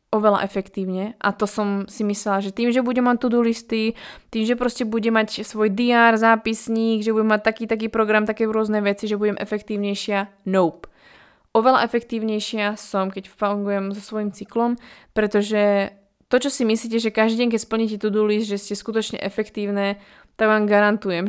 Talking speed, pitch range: 175 wpm, 200-225 Hz